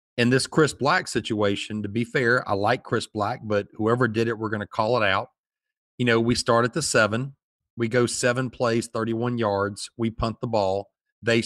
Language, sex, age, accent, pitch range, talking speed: English, male, 40-59, American, 115-145 Hz, 210 wpm